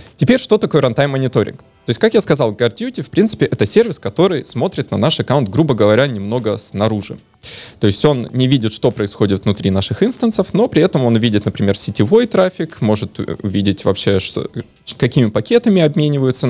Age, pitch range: 20-39, 105-155 Hz